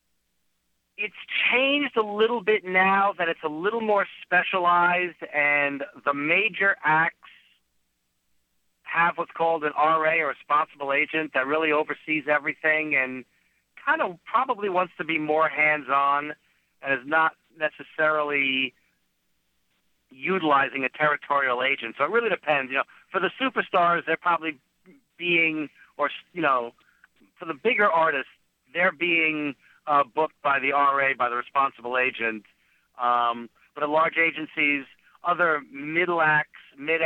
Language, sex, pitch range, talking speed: English, male, 140-170 Hz, 135 wpm